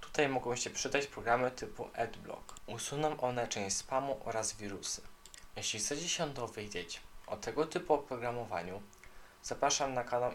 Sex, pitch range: male, 110-130 Hz